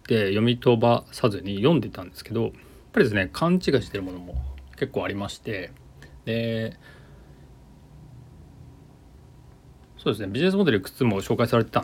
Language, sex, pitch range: Japanese, male, 95-130 Hz